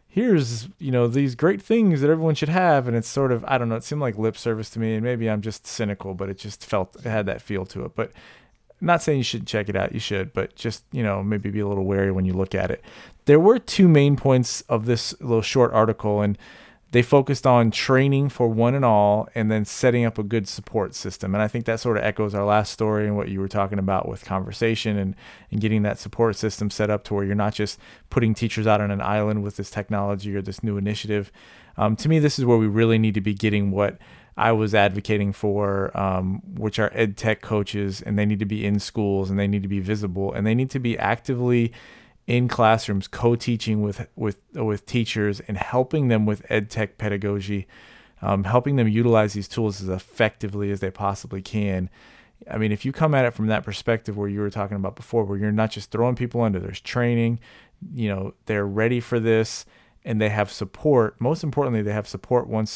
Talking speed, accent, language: 235 wpm, American, English